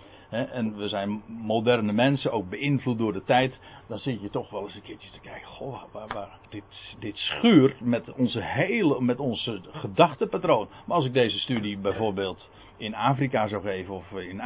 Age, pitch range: 60-79, 105-160 Hz